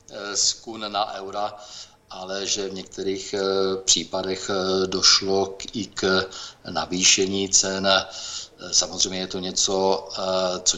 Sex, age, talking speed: male, 50-69, 110 wpm